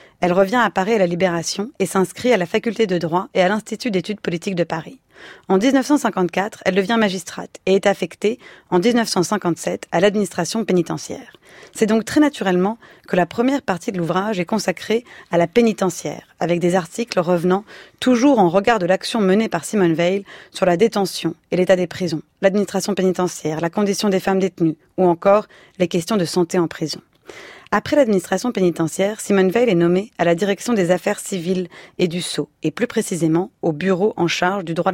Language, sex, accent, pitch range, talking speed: French, female, French, 175-210 Hz, 185 wpm